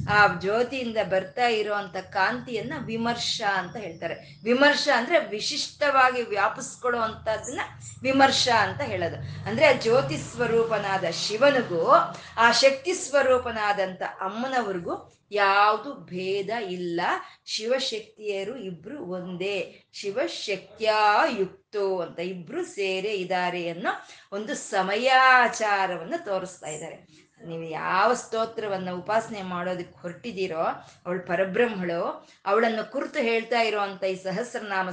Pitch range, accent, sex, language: 190-250 Hz, native, female, Kannada